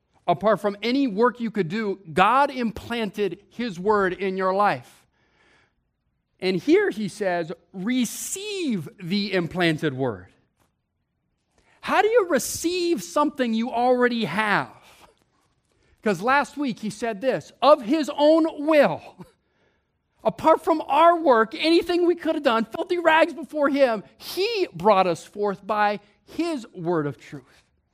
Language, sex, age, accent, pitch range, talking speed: English, male, 40-59, American, 160-260 Hz, 135 wpm